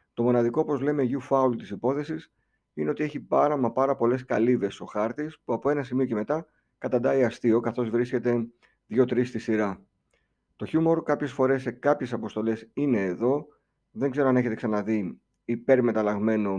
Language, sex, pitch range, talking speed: Greek, male, 110-135 Hz, 165 wpm